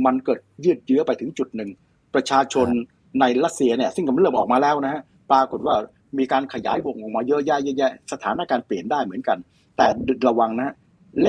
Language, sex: Thai, male